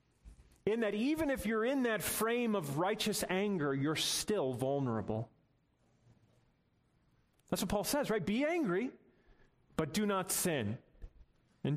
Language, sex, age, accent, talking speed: English, male, 30-49, American, 135 wpm